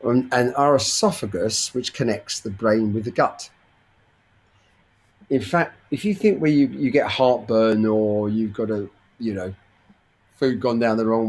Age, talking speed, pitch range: 40-59, 165 wpm, 110-145 Hz